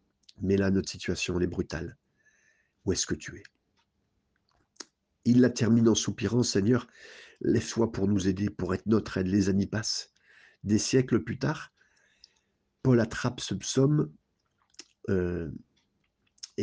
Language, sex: French, male